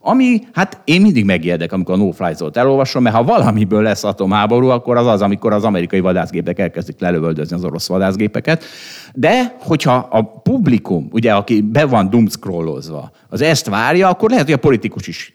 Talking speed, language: 170 wpm, Hungarian